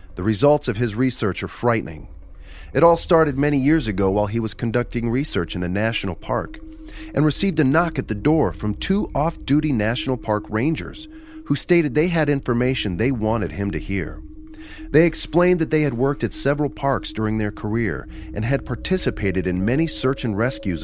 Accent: American